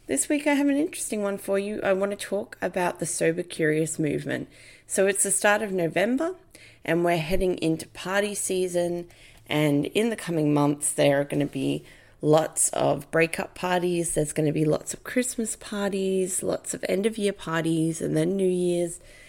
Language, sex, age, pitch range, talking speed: English, female, 20-39, 155-195 Hz, 195 wpm